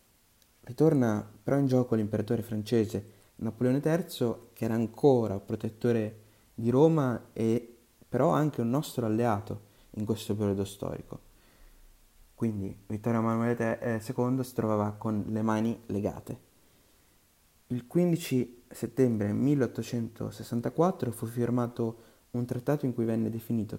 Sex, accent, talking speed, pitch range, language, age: male, native, 115 wpm, 105-125 Hz, Italian, 20-39